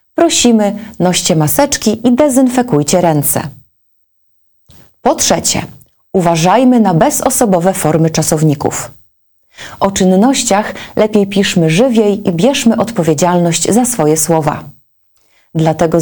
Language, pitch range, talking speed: Polish, 160-215 Hz, 95 wpm